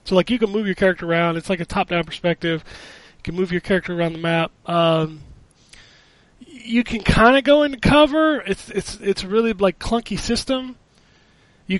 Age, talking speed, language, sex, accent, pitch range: 20-39, 190 wpm, English, male, American, 170-210 Hz